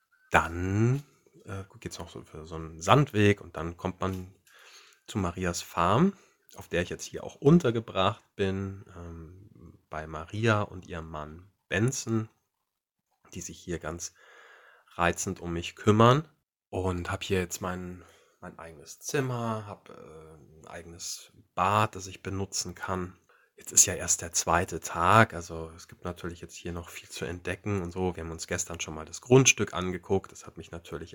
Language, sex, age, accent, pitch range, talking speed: German, male, 30-49, German, 85-105 Hz, 165 wpm